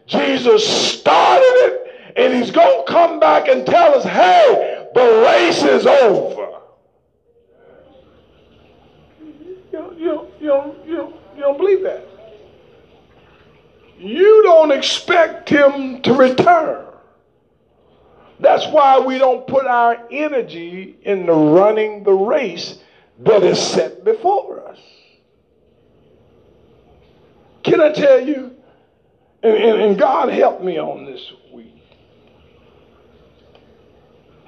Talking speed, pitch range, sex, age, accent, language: 100 wpm, 260-435 Hz, male, 50-69, American, English